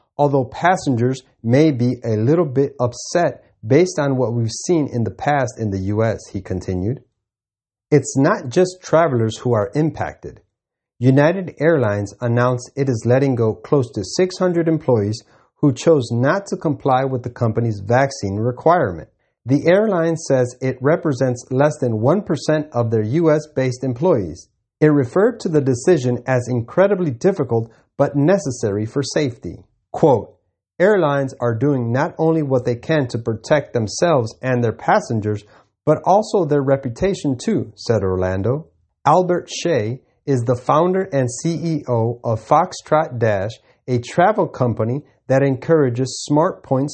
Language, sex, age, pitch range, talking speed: English, male, 30-49, 115-155 Hz, 145 wpm